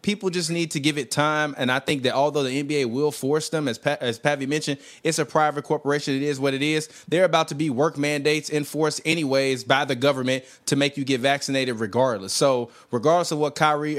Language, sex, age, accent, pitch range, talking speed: English, male, 20-39, American, 115-145 Hz, 225 wpm